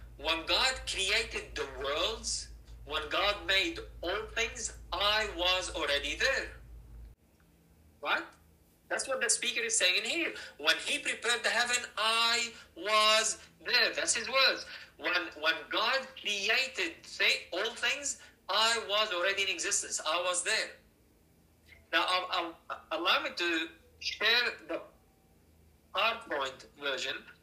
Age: 50-69